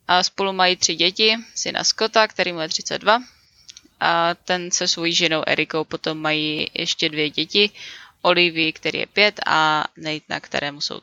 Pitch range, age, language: 155-205 Hz, 20-39, Czech